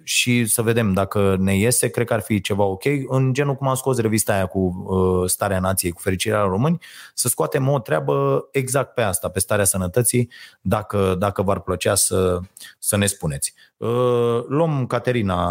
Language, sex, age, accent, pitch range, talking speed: Romanian, male, 30-49, native, 95-120 Hz, 180 wpm